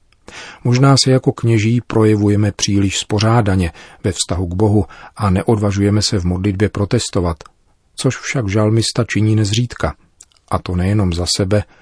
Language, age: Czech, 40-59